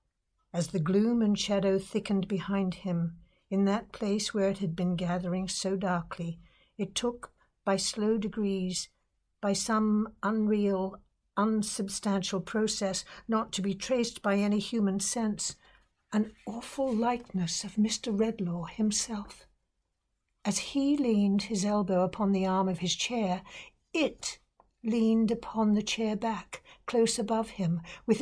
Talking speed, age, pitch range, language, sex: 135 wpm, 60-79, 185-225 Hz, English, female